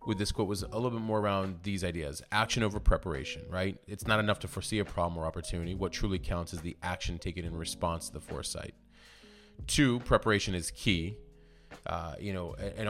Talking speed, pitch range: 205 wpm, 90-110 Hz